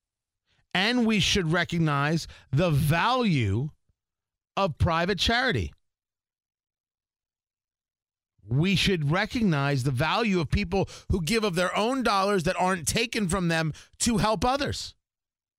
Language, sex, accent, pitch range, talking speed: English, male, American, 140-225 Hz, 115 wpm